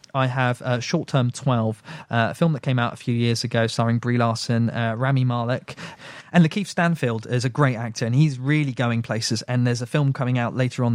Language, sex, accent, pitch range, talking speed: English, male, British, 115-135 Hz, 230 wpm